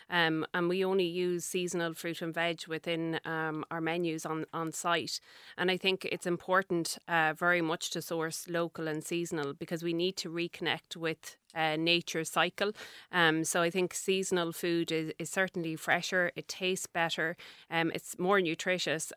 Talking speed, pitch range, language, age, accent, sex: 170 wpm, 160-180 Hz, English, 30-49, Irish, female